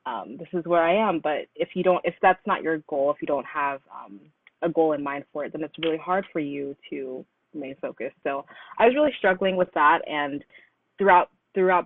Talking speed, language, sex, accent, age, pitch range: 230 wpm, English, female, American, 20-39, 145-175 Hz